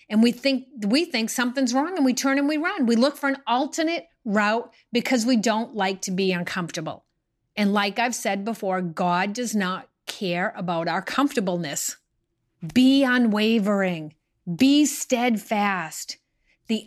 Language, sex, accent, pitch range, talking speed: English, female, American, 185-240 Hz, 155 wpm